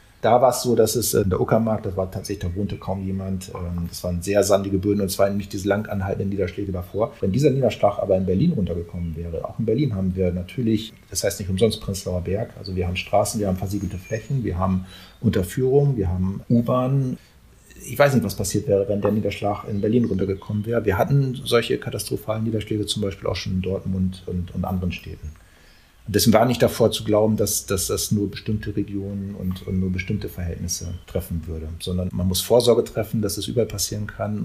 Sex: male